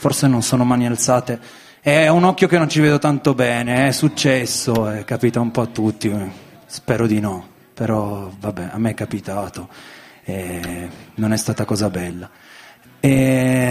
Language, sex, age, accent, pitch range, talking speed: Italian, male, 20-39, native, 115-160 Hz, 165 wpm